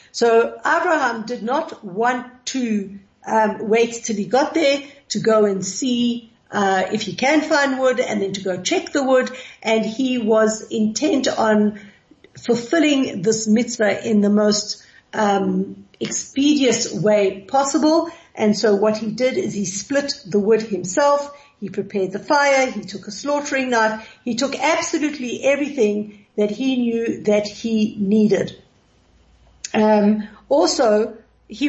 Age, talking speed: 60-79, 145 wpm